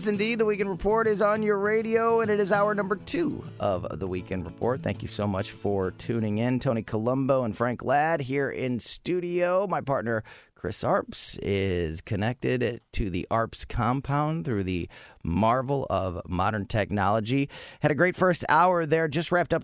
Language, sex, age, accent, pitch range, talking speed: English, male, 30-49, American, 105-155 Hz, 175 wpm